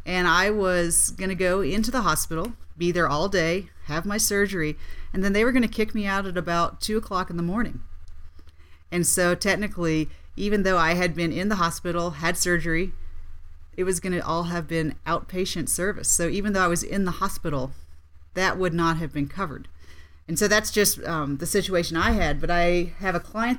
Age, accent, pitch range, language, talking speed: 40-59, American, 155-190 Hz, English, 200 wpm